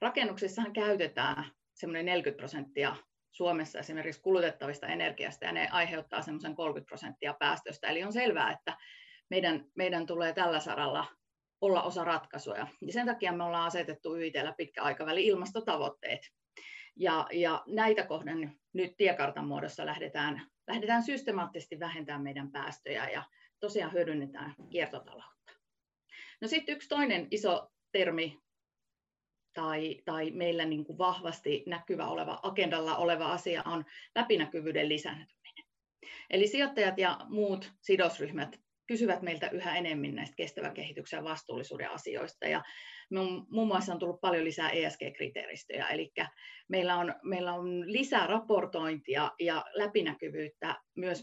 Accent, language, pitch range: native, Finnish, 160-205 Hz